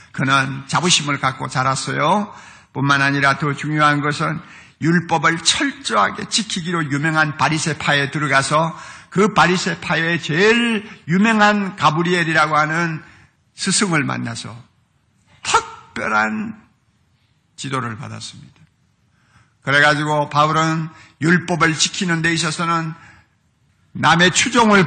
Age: 60-79